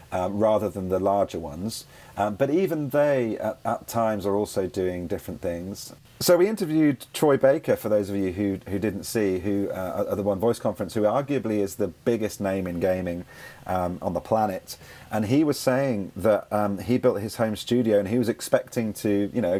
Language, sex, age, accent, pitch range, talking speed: English, male, 30-49, British, 95-125 Hz, 210 wpm